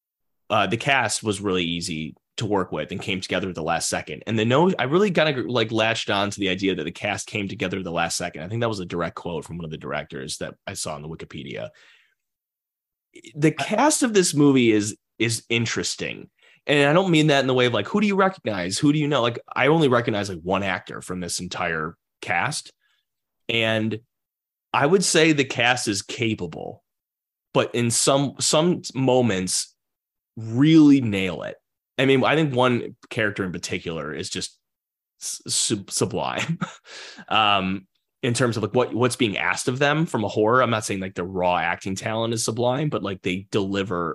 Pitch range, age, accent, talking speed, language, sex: 95-135 Hz, 20-39, American, 205 wpm, English, male